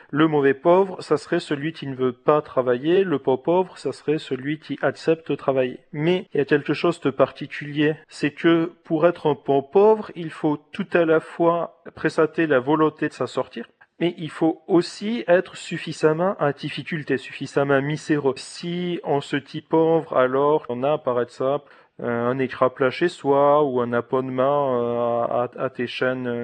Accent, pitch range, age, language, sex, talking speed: French, 140-175 Hz, 40-59, French, male, 180 wpm